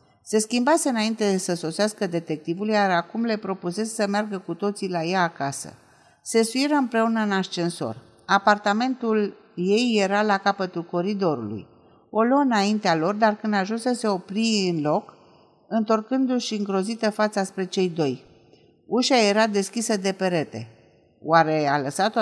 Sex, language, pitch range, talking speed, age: female, Romanian, 170-220 Hz, 145 wpm, 50-69